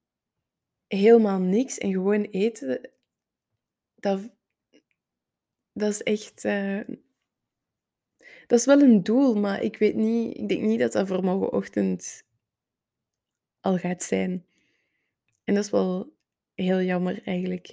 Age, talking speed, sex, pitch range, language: 20-39, 120 wpm, female, 185-220 Hz, Dutch